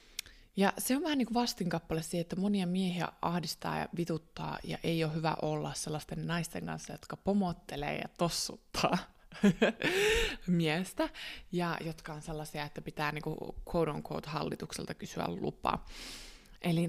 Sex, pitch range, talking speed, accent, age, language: female, 160-200 Hz, 140 wpm, native, 20-39, Finnish